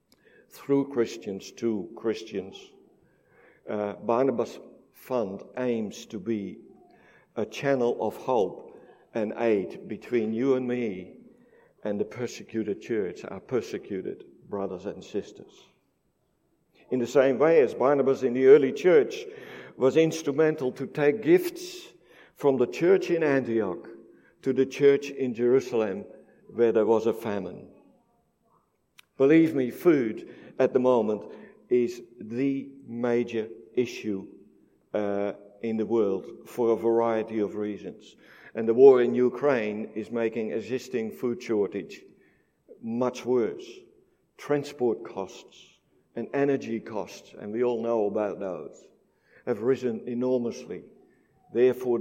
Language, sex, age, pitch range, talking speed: English, male, 60-79, 115-140 Hz, 120 wpm